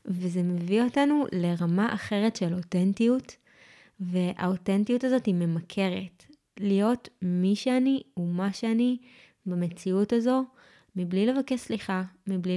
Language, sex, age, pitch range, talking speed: Hebrew, female, 20-39, 185-240 Hz, 105 wpm